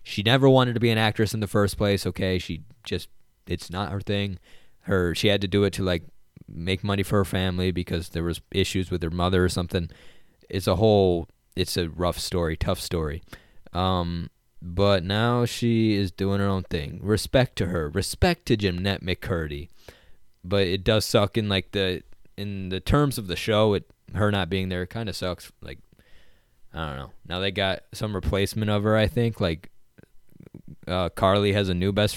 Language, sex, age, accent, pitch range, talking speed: English, male, 20-39, American, 90-105 Hz, 200 wpm